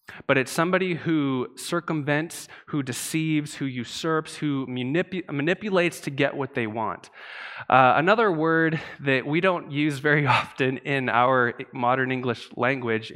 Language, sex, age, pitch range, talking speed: English, male, 20-39, 120-160 Hz, 135 wpm